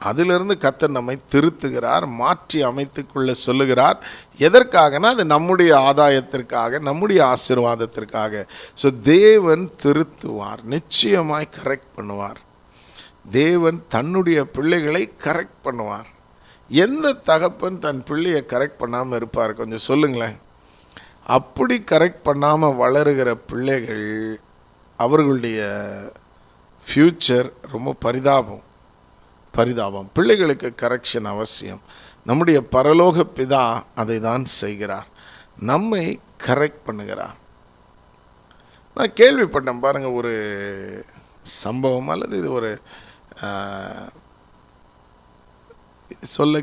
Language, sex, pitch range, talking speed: Tamil, male, 110-150 Hz, 80 wpm